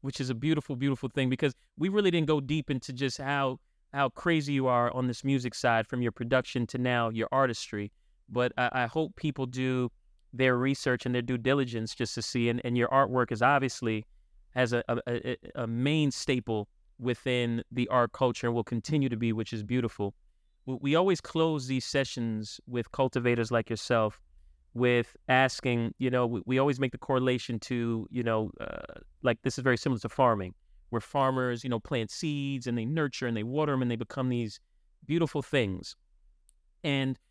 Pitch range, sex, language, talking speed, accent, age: 115-135 Hz, male, English, 195 wpm, American, 30-49